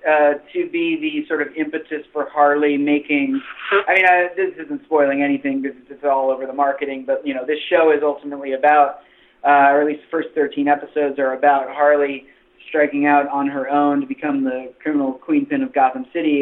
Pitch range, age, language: 140-175 Hz, 30-49, English